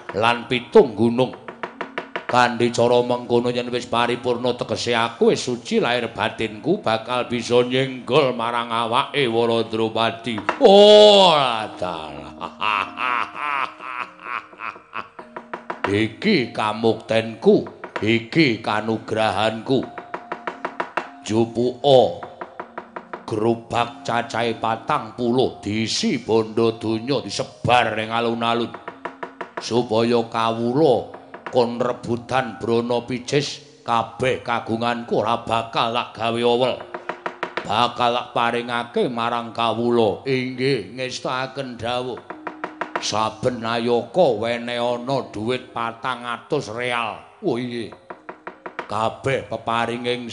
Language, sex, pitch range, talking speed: Indonesian, male, 115-125 Hz, 70 wpm